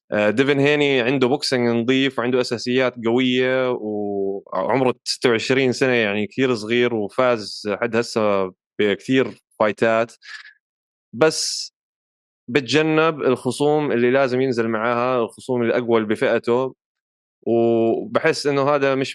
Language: Arabic